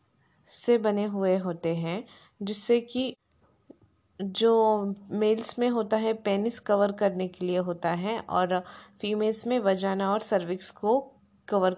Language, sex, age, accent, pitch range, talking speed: Hindi, female, 20-39, native, 195-230 Hz, 140 wpm